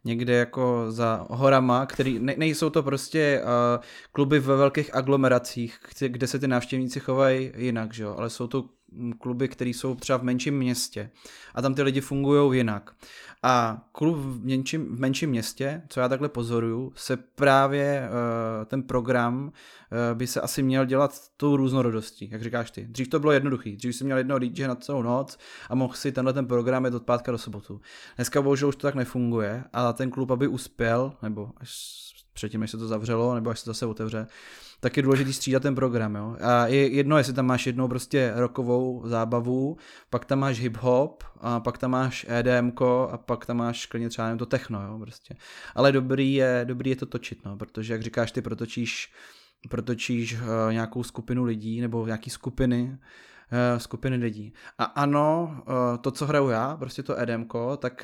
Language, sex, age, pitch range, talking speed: Czech, male, 20-39, 120-135 Hz, 180 wpm